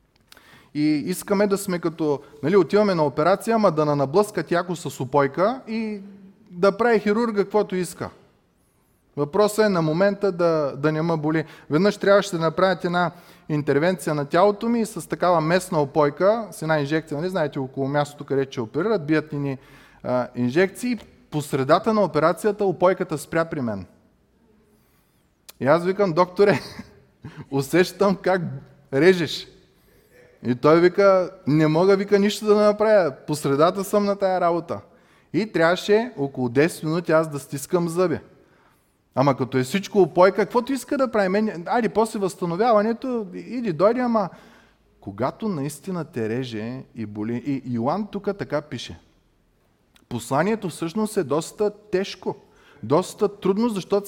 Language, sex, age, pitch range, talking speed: Bulgarian, male, 20-39, 150-205 Hz, 145 wpm